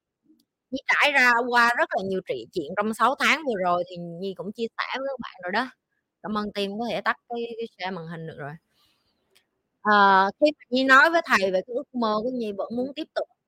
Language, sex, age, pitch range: Vietnamese, female, 20-39, 190-255 Hz